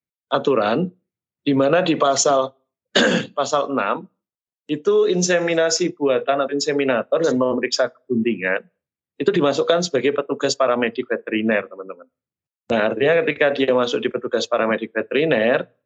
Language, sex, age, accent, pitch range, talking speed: Indonesian, male, 30-49, native, 120-150 Hz, 115 wpm